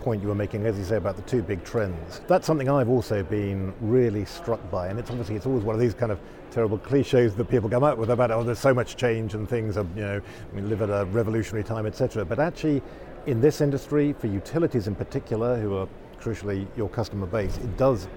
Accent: British